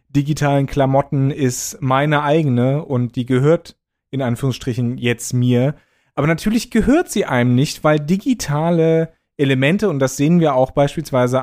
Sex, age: male, 30-49